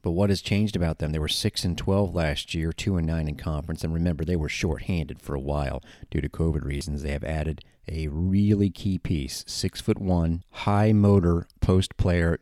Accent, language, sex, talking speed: American, English, male, 205 wpm